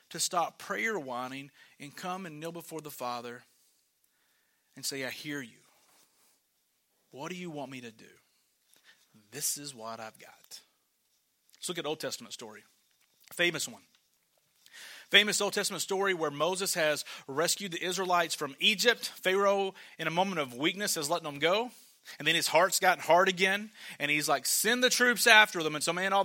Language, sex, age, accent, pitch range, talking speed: English, male, 30-49, American, 155-195 Hz, 175 wpm